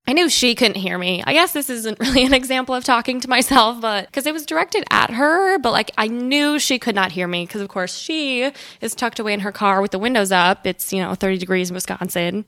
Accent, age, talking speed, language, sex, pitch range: American, 10-29, 260 wpm, English, female, 200-265 Hz